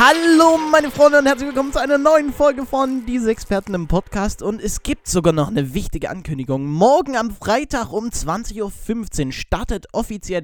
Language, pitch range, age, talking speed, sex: German, 135-230 Hz, 20-39, 180 wpm, male